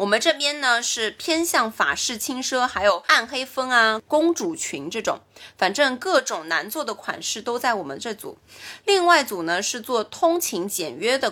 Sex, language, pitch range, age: female, Chinese, 210-280 Hz, 20-39